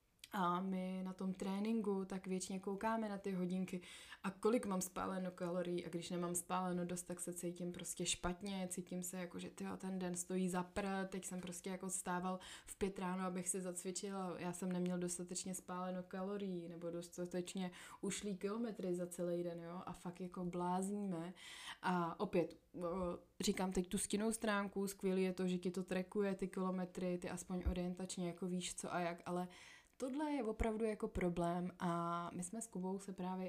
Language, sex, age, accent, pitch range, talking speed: Czech, female, 20-39, native, 180-200 Hz, 185 wpm